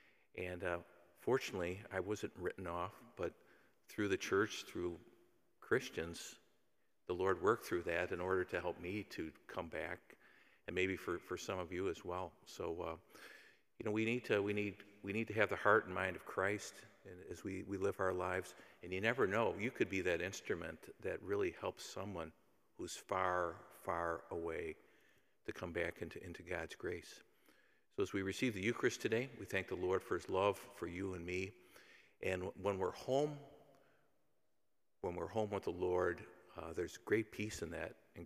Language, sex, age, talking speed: English, male, 50-69, 185 wpm